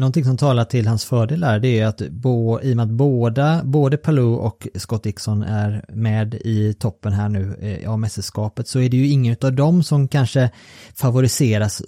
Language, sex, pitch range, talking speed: Swedish, male, 100-120 Hz, 185 wpm